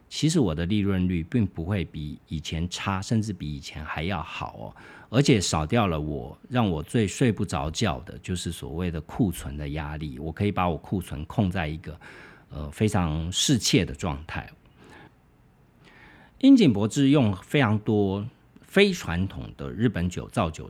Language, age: Chinese, 50-69